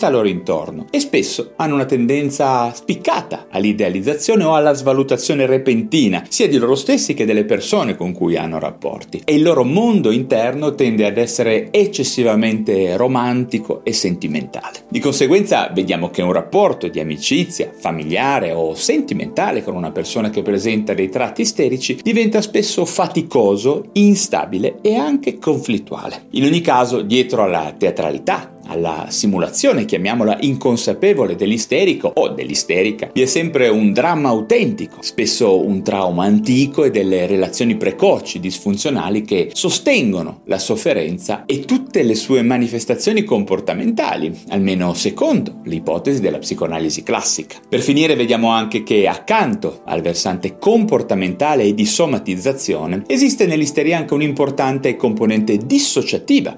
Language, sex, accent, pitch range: Italian, male, native, 105-165 Hz